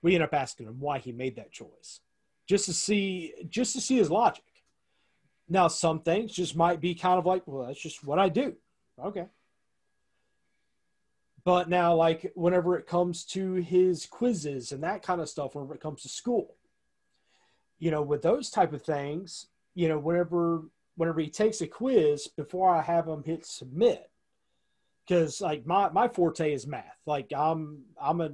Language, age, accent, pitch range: English, 30-49, American, 145-180 Hz